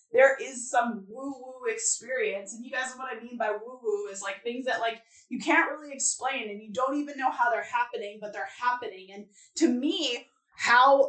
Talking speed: 215 wpm